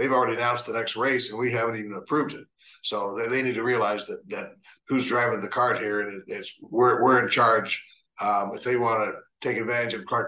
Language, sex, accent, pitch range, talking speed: English, male, American, 110-125 Hz, 235 wpm